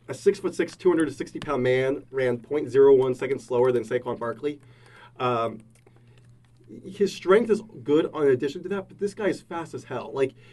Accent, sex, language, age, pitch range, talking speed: American, male, English, 30-49, 125-190 Hz, 170 wpm